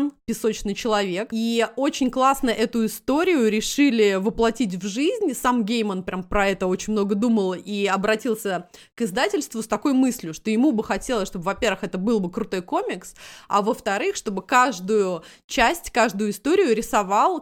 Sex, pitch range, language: female, 200-250 Hz, Russian